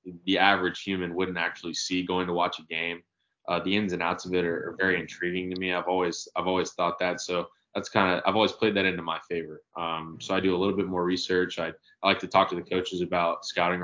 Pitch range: 85-95 Hz